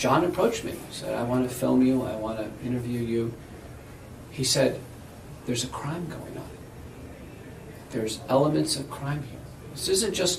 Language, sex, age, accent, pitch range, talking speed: English, male, 50-69, American, 115-145 Hz, 170 wpm